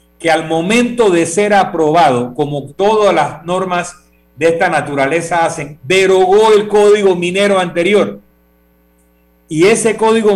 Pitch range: 145-195 Hz